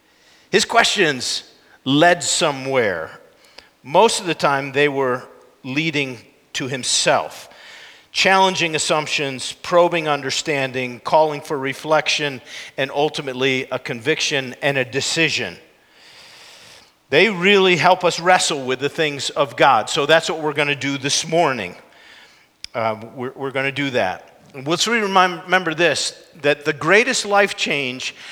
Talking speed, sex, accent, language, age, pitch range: 125 wpm, male, American, English, 50-69, 140-175 Hz